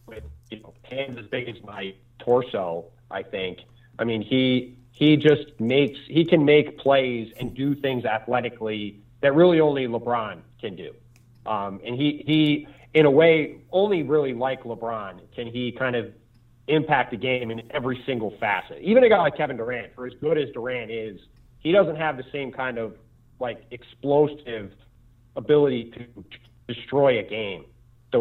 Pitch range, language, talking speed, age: 115-140 Hz, English, 170 wpm, 40-59